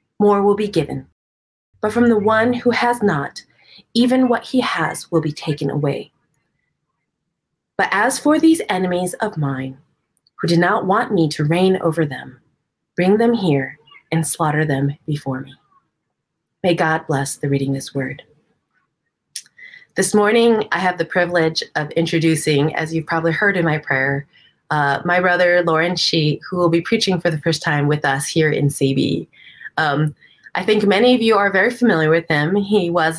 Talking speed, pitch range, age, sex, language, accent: 175 wpm, 150-190 Hz, 30-49, female, English, American